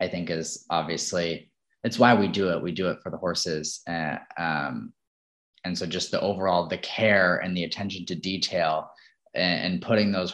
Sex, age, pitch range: male, 20-39, 90-115 Hz